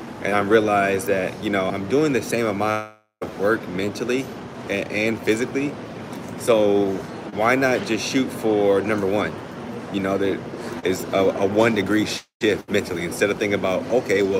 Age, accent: 30-49, American